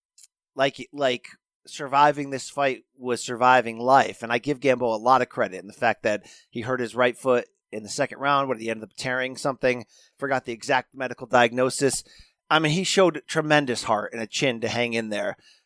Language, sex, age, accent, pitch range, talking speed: English, male, 30-49, American, 125-160 Hz, 205 wpm